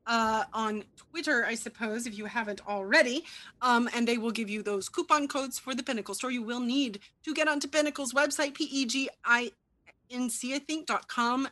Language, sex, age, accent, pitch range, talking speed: English, female, 30-49, American, 220-280 Hz, 160 wpm